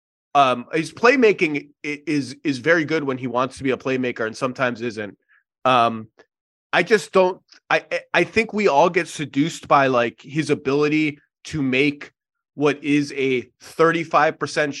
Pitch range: 125-160 Hz